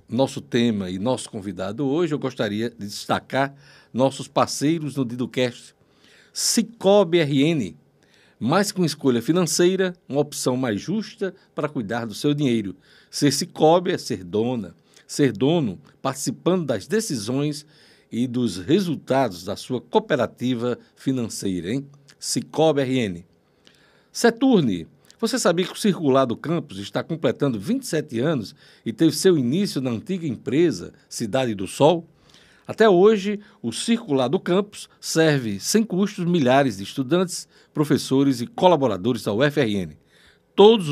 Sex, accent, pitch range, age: male, Brazilian, 120-170 Hz, 60-79